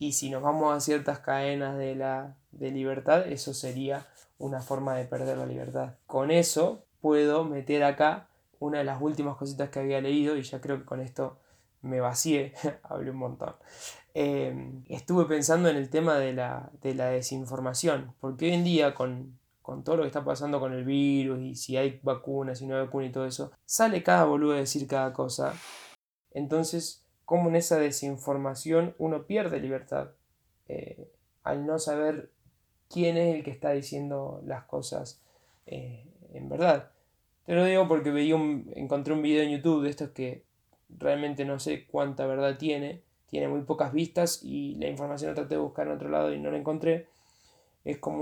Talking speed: 185 wpm